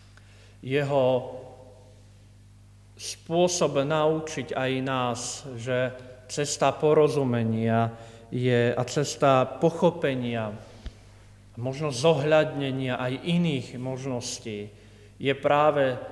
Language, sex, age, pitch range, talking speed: Slovak, male, 40-59, 100-140 Hz, 70 wpm